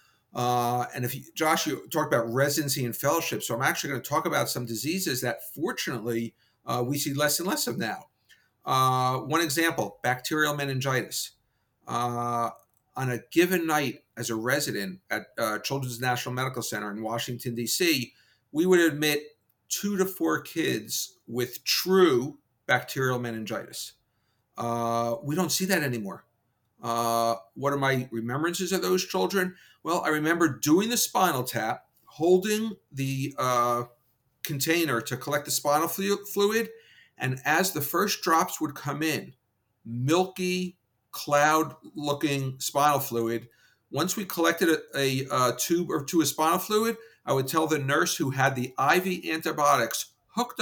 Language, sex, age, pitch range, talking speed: English, male, 50-69, 120-165 Hz, 150 wpm